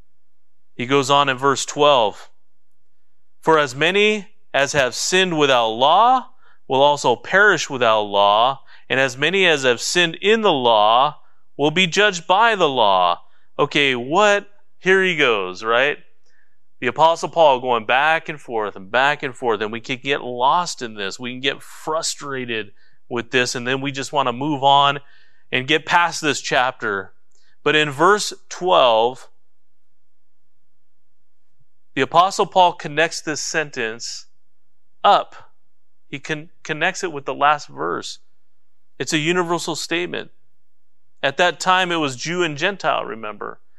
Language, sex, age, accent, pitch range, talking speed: English, male, 30-49, American, 135-185 Hz, 150 wpm